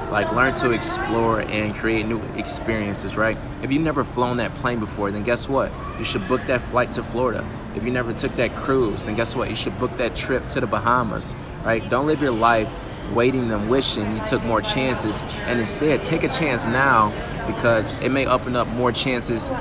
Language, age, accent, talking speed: English, 20-39, American, 210 wpm